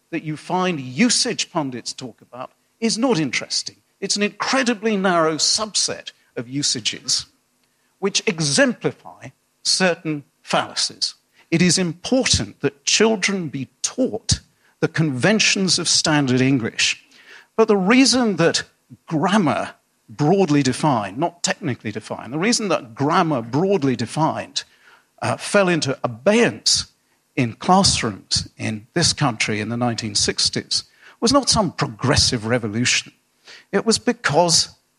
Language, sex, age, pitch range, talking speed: English, male, 50-69, 130-200 Hz, 120 wpm